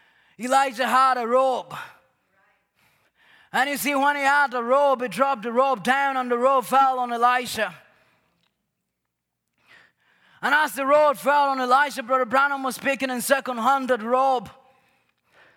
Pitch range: 265-305 Hz